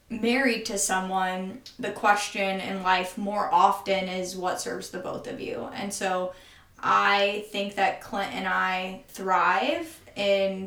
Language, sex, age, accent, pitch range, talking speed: English, female, 20-39, American, 190-230 Hz, 145 wpm